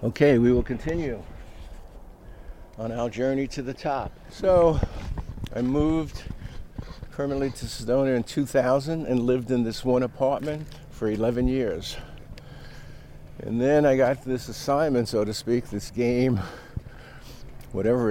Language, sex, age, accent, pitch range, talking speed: English, male, 60-79, American, 110-130 Hz, 130 wpm